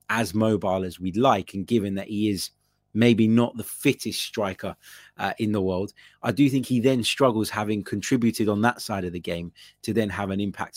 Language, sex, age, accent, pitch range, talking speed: English, male, 20-39, British, 100-120 Hz, 210 wpm